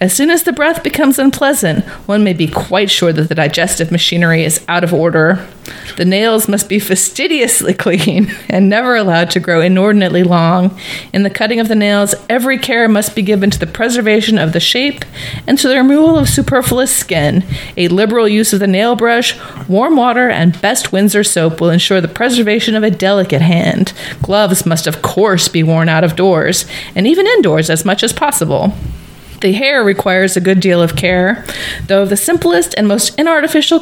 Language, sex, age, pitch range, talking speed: English, female, 30-49, 175-230 Hz, 195 wpm